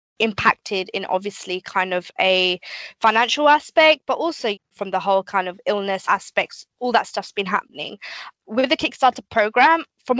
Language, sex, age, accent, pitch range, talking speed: English, female, 10-29, British, 190-235 Hz, 160 wpm